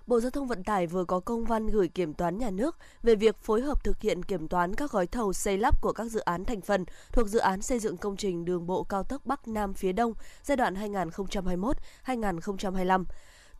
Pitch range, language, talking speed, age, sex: 185-235 Hz, Vietnamese, 225 wpm, 20-39, female